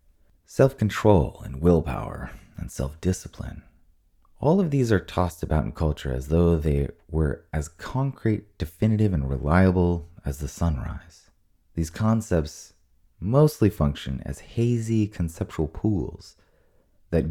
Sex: male